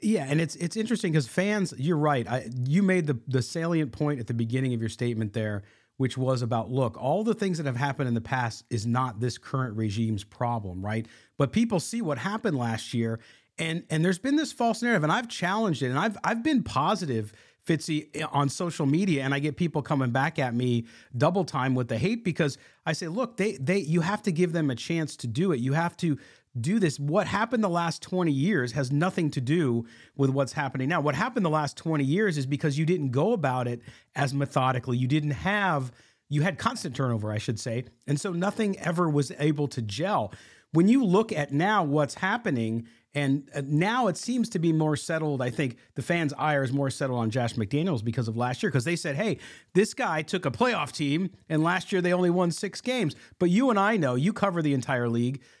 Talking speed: 225 wpm